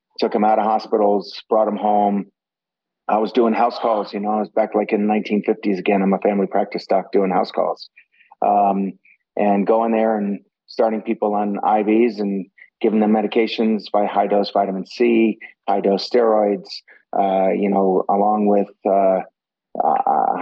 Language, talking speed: English, 170 wpm